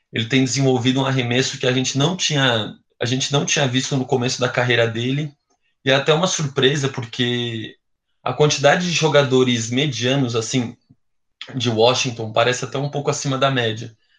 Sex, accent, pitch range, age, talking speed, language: male, Brazilian, 120-140 Hz, 20-39, 155 wpm, Portuguese